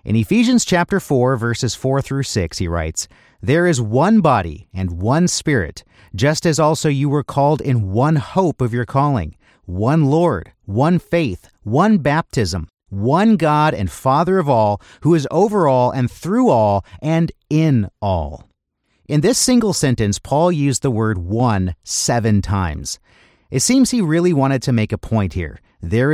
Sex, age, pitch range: male, 40-59, 105-155 Hz